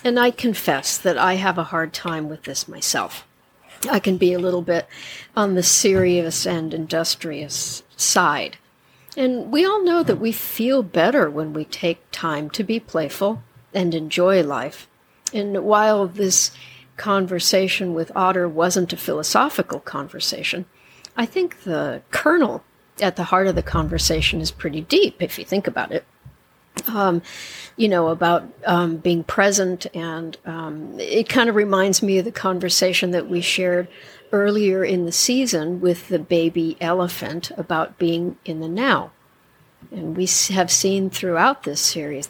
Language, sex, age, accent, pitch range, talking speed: English, female, 60-79, American, 165-195 Hz, 155 wpm